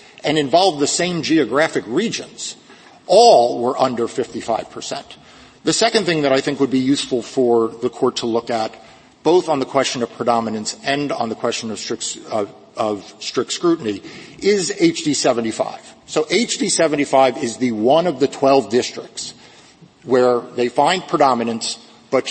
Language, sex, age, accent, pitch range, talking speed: English, male, 50-69, American, 125-170 Hz, 160 wpm